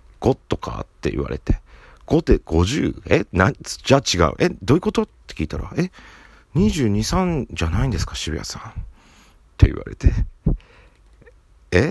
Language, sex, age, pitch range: Japanese, male, 50-69, 80-110 Hz